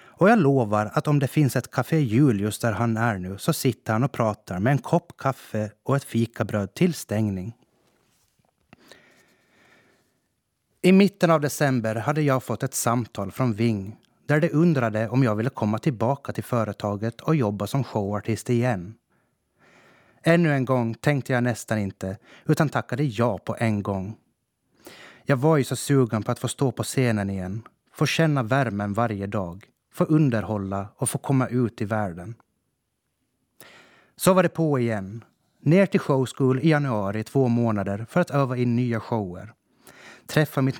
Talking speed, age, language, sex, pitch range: 165 wpm, 30-49, Swedish, male, 110-140 Hz